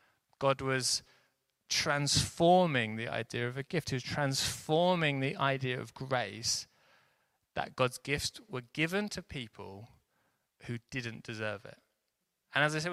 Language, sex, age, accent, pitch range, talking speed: English, male, 20-39, British, 115-150 Hz, 140 wpm